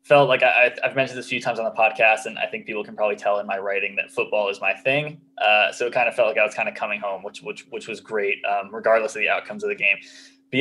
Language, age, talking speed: English, 20-39, 305 wpm